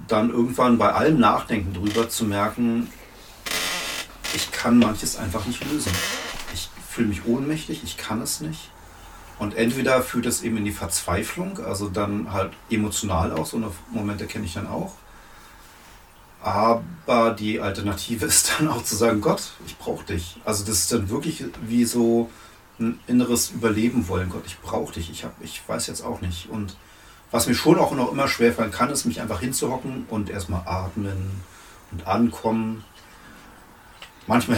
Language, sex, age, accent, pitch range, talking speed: German, male, 40-59, German, 95-115 Hz, 165 wpm